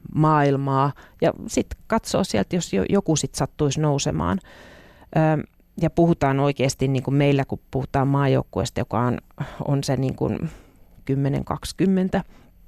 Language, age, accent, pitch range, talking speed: Finnish, 30-49, native, 135-200 Hz, 125 wpm